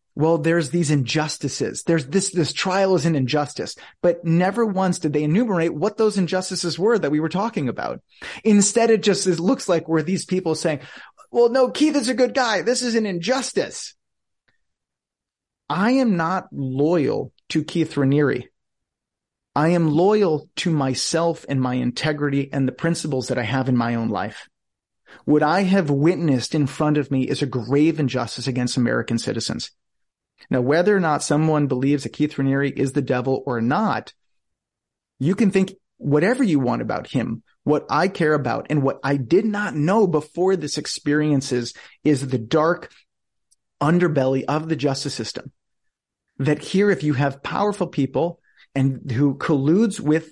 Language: English